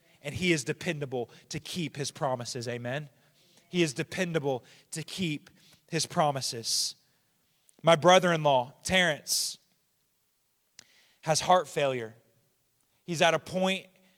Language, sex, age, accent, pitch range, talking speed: English, male, 30-49, American, 140-170 Hz, 110 wpm